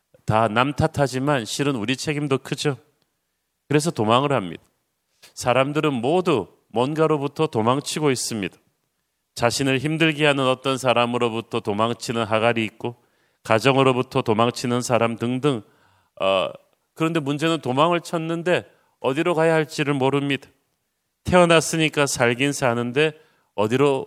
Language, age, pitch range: Korean, 30-49, 120-155 Hz